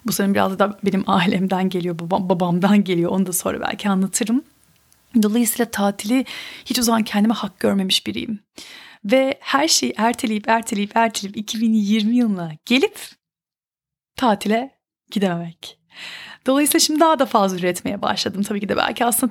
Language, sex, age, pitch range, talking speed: Turkish, female, 30-49, 200-265 Hz, 145 wpm